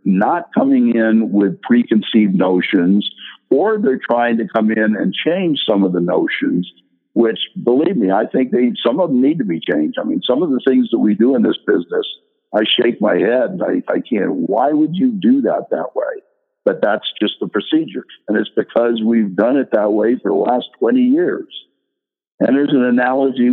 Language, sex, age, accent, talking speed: English, male, 60-79, American, 200 wpm